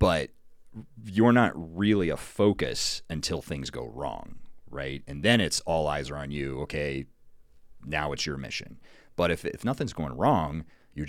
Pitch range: 70-85 Hz